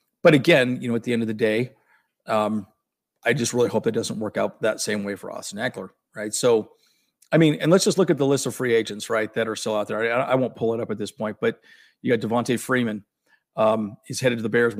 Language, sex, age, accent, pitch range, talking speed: English, male, 50-69, American, 105-120 Hz, 265 wpm